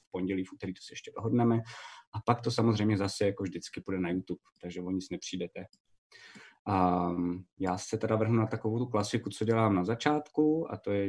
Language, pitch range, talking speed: Czech, 95-115 Hz, 200 wpm